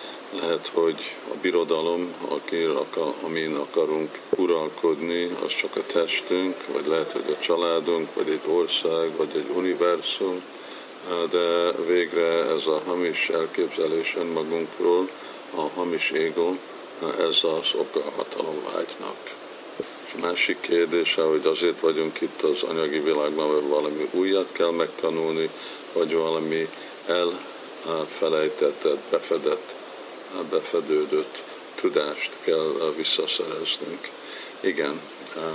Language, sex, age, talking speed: Hungarian, male, 50-69, 105 wpm